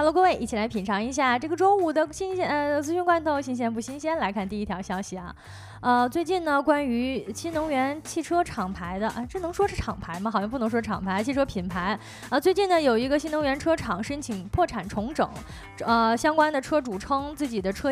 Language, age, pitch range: Chinese, 20-39, 220-305 Hz